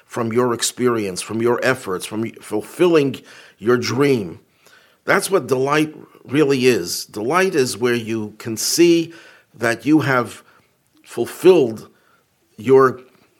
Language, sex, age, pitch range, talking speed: English, male, 50-69, 125-165 Hz, 115 wpm